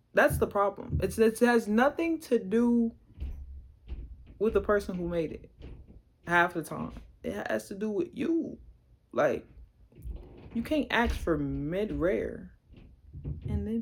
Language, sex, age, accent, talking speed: English, female, 20-39, American, 140 wpm